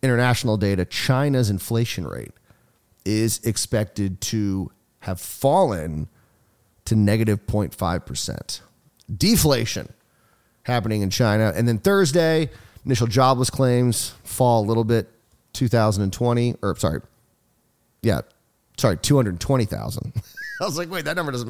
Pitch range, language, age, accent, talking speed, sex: 105-130 Hz, English, 30-49, American, 110 wpm, male